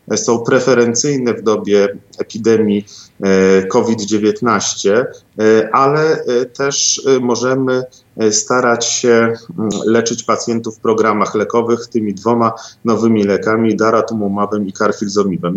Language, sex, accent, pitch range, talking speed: Polish, male, native, 105-125 Hz, 90 wpm